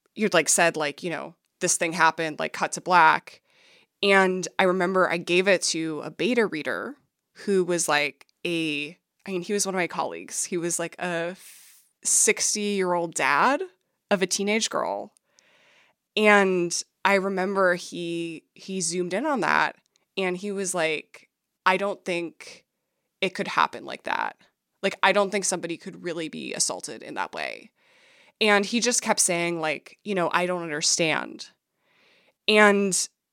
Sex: female